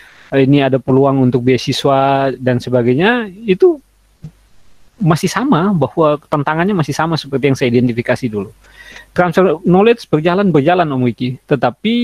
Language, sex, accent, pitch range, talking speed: Indonesian, male, native, 130-170 Hz, 125 wpm